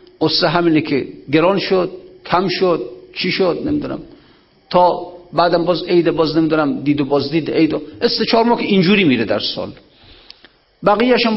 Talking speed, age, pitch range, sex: 150 wpm, 50-69, 140-190 Hz, male